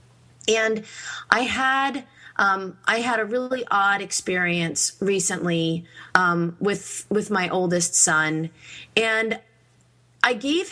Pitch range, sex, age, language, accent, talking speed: 175-225 Hz, female, 30-49, English, American, 110 wpm